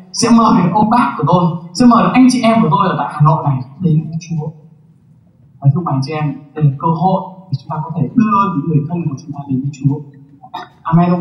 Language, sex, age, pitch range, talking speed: Vietnamese, male, 20-39, 150-230 Hz, 250 wpm